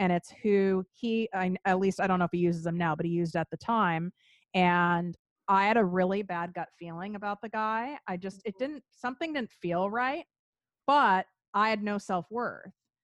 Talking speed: 200 wpm